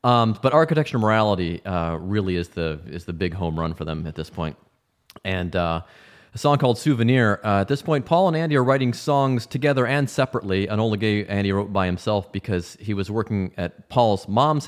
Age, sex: 30-49, male